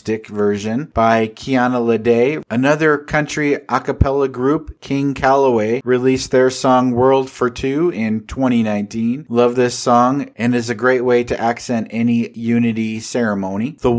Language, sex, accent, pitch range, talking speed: English, male, American, 115-130 Hz, 135 wpm